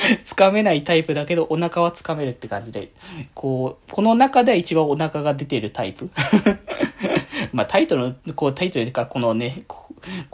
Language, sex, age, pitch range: Japanese, male, 20-39, 130-180 Hz